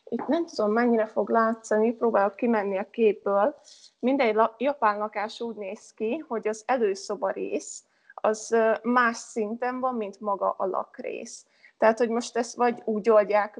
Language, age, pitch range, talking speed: Hungarian, 20-39, 205-235 Hz, 150 wpm